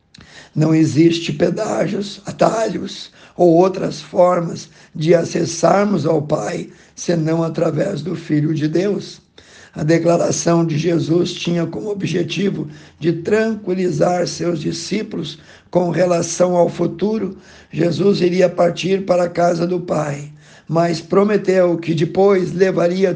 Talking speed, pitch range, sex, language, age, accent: 115 wpm, 170-190 Hz, male, Portuguese, 60-79, Brazilian